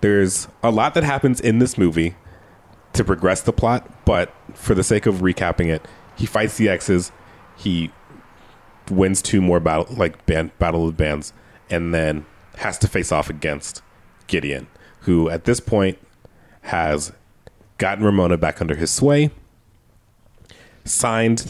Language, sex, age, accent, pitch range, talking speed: English, male, 30-49, American, 85-110 Hz, 145 wpm